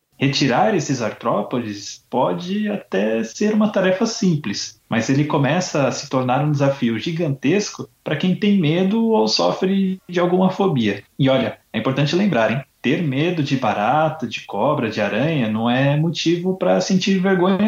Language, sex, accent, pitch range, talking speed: Portuguese, male, Brazilian, 125-175 Hz, 160 wpm